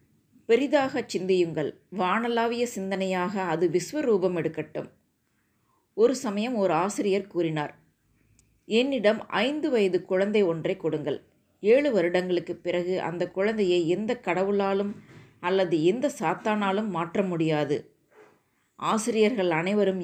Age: 20-39